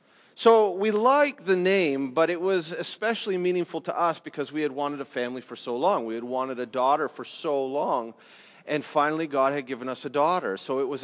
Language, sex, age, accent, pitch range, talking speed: English, male, 40-59, American, 145-195 Hz, 215 wpm